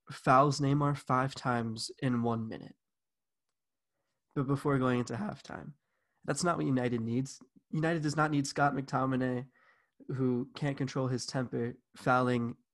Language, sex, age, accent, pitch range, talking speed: English, male, 20-39, American, 120-135 Hz, 135 wpm